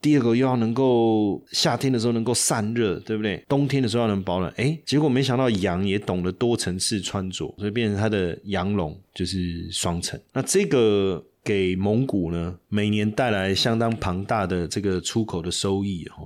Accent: native